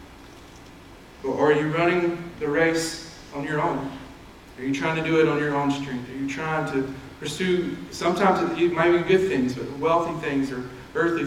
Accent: American